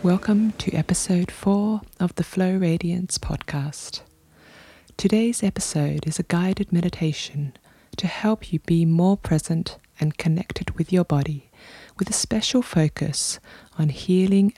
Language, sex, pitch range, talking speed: English, female, 150-190 Hz, 130 wpm